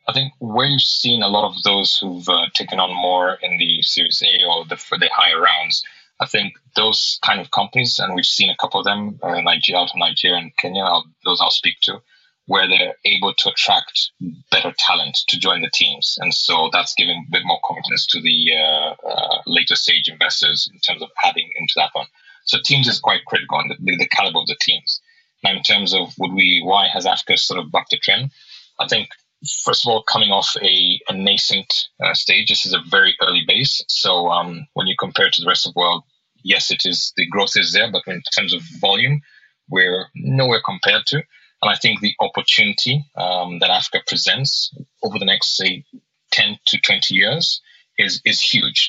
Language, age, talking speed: English, 30-49, 215 wpm